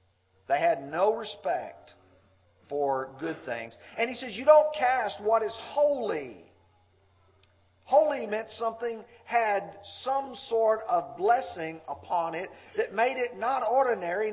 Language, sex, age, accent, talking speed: English, male, 50-69, American, 130 wpm